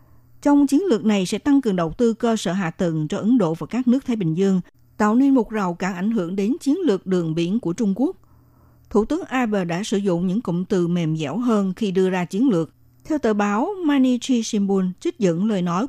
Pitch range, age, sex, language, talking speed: 175-240 Hz, 60-79, female, Vietnamese, 240 wpm